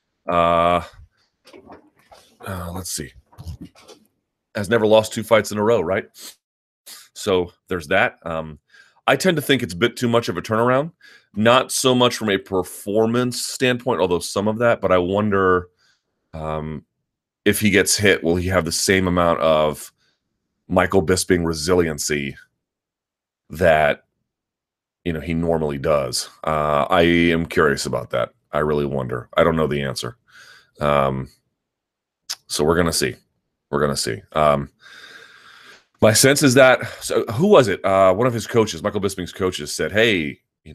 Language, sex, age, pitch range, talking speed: English, male, 30-49, 80-110 Hz, 160 wpm